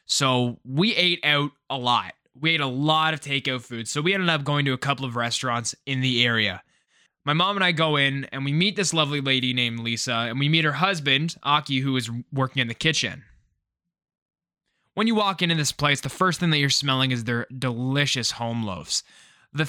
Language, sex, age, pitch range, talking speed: English, male, 20-39, 130-160 Hz, 215 wpm